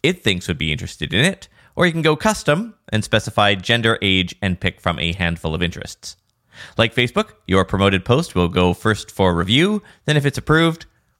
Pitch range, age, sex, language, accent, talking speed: 90-120 Hz, 20-39, male, English, American, 205 wpm